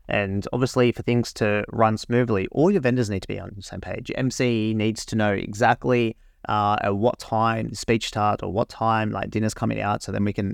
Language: English